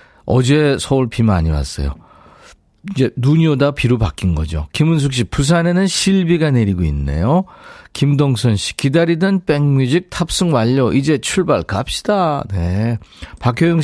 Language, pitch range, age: Korean, 100-160 Hz, 40-59